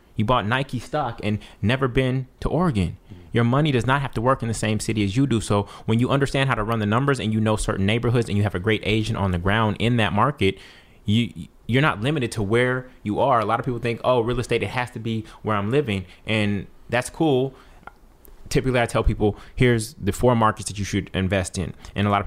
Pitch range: 95-115 Hz